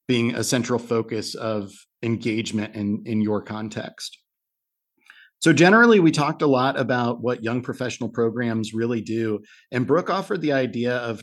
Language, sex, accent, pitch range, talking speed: English, male, American, 115-140 Hz, 155 wpm